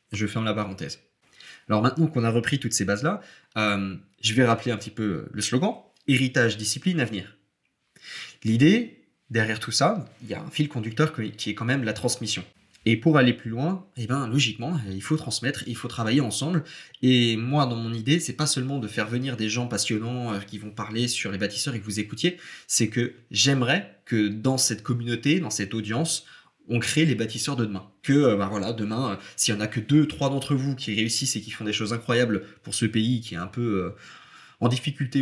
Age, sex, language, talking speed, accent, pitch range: 20-39, male, French, 220 wpm, French, 110-140 Hz